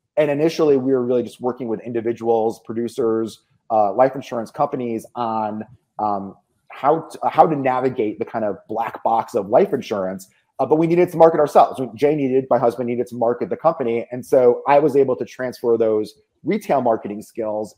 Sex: male